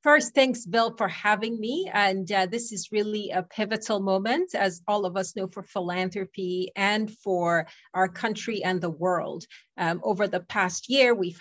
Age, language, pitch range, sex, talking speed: 30-49, English, 185-225 Hz, female, 180 wpm